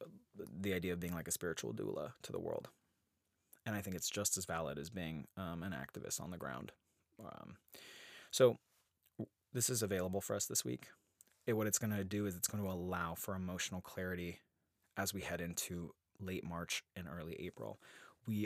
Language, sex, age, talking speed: English, male, 20-39, 190 wpm